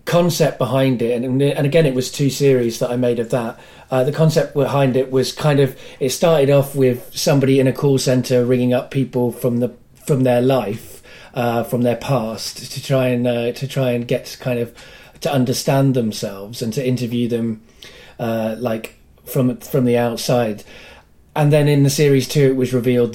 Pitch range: 120-135 Hz